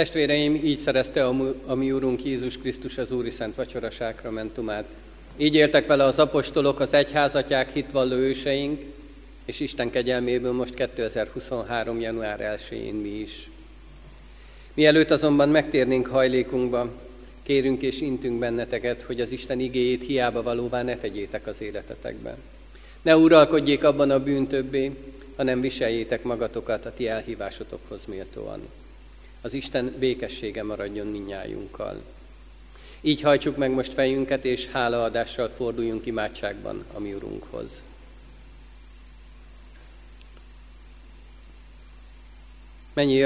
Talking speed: 110 wpm